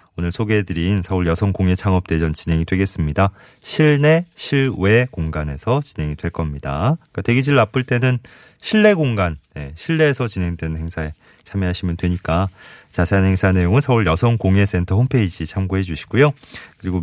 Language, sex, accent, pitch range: Korean, male, native, 85-125 Hz